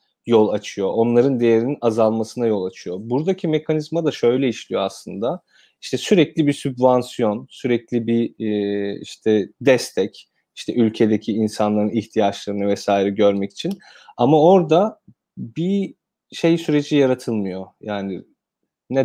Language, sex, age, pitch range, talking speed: Turkish, male, 30-49, 110-145 Hz, 115 wpm